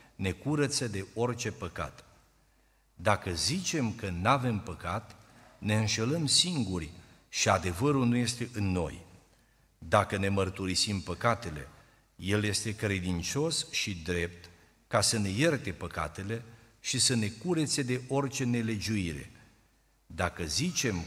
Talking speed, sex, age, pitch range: 120 wpm, male, 50-69, 95-125 Hz